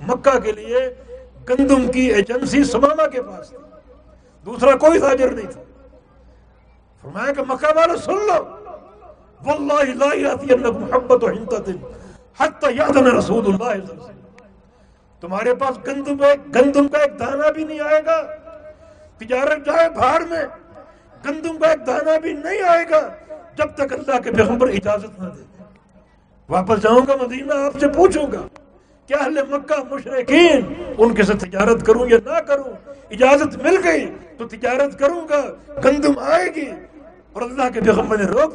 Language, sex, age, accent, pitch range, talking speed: English, male, 60-79, Indian, 245-310 Hz, 105 wpm